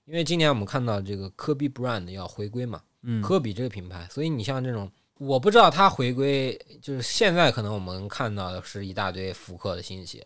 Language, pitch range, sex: Chinese, 95-120 Hz, male